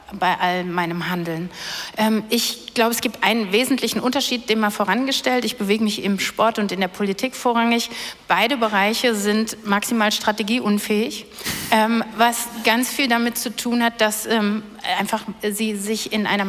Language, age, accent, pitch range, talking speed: German, 60-79, German, 195-230 Hz, 155 wpm